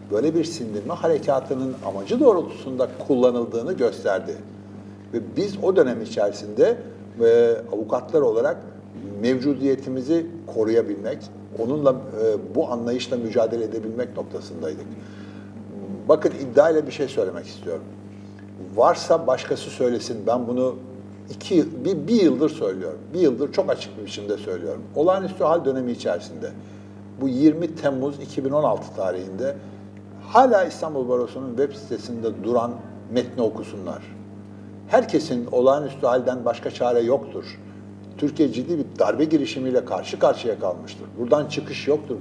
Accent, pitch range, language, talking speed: native, 100-135 Hz, Turkish, 120 wpm